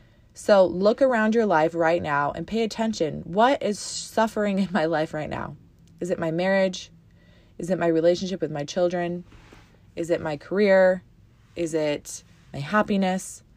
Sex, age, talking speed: female, 20-39, 165 wpm